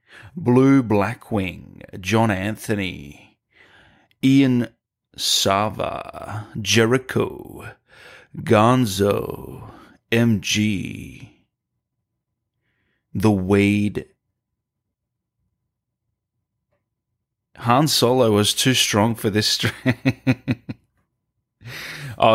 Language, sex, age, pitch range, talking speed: English, male, 30-49, 105-120 Hz, 50 wpm